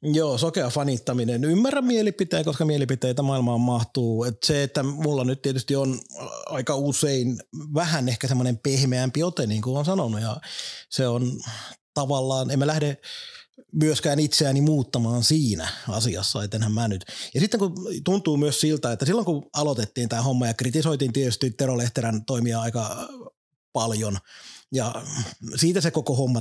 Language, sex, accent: Finnish, male, native